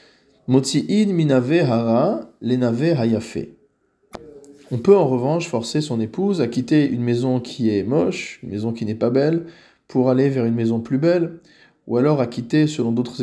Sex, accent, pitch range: male, French, 115-140 Hz